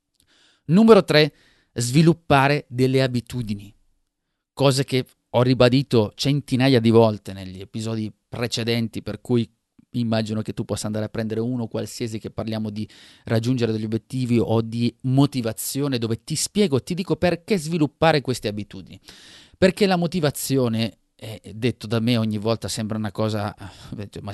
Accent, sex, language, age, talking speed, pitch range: native, male, Italian, 30-49, 140 wpm, 110-145 Hz